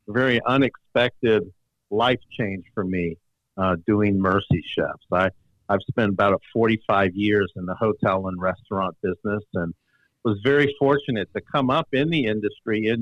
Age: 50-69